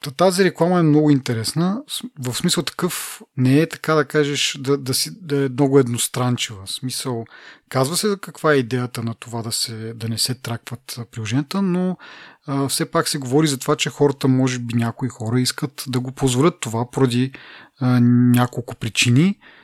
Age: 30-49